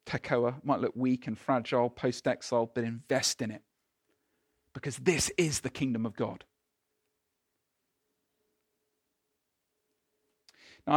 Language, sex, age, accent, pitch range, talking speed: English, male, 40-59, British, 140-200 Hz, 105 wpm